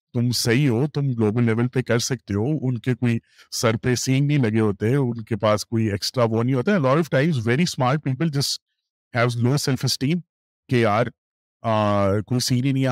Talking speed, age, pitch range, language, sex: 110 wpm, 30-49, 105-140 Hz, Urdu, male